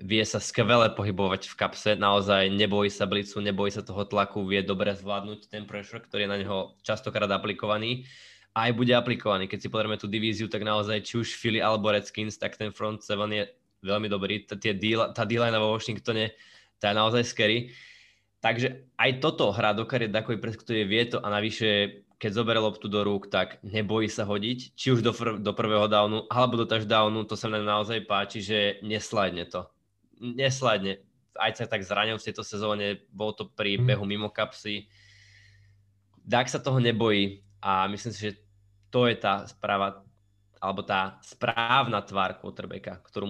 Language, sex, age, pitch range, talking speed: Slovak, male, 20-39, 100-110 Hz, 170 wpm